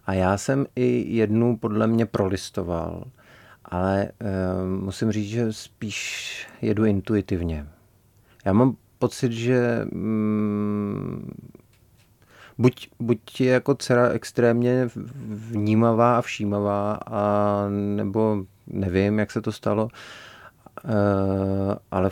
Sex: male